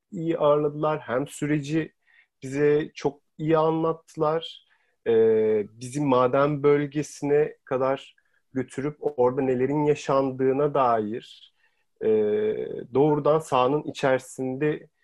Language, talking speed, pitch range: Turkish, 90 wpm, 135-185 Hz